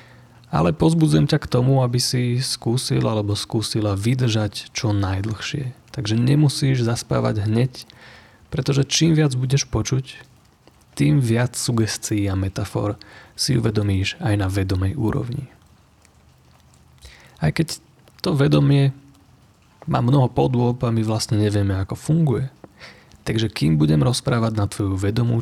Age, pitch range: 30-49, 105-135 Hz